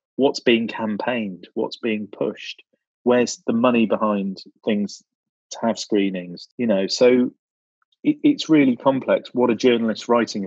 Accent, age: British, 30-49